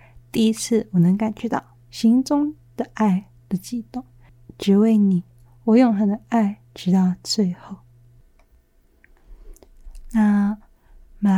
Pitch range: 185-240 Hz